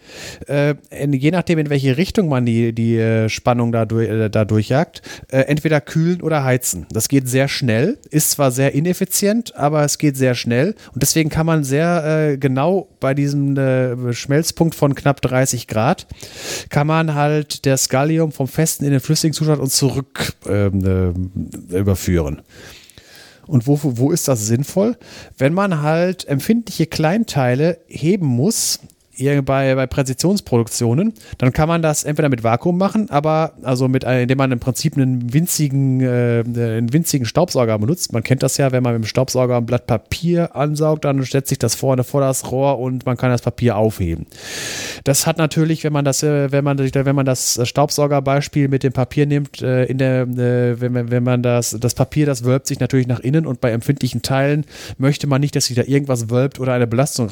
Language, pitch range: German, 125-150 Hz